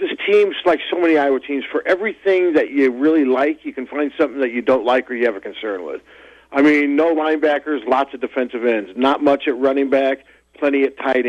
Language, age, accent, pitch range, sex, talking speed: English, 50-69, American, 135-165 Hz, male, 230 wpm